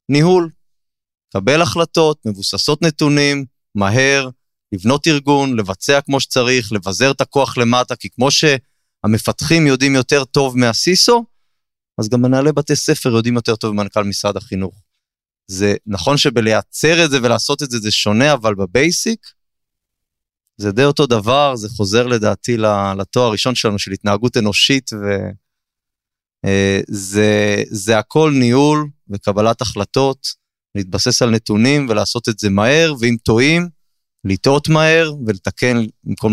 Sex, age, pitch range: male, 20-39, 100-135 Hz